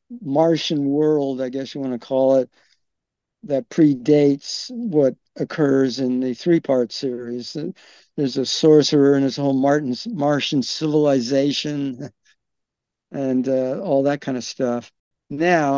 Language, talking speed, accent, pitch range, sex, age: English, 130 wpm, American, 125-155 Hz, male, 60-79